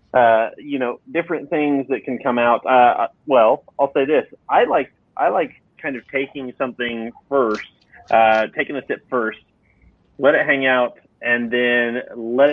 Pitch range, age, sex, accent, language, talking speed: 115-140 Hz, 30-49, male, American, English, 170 wpm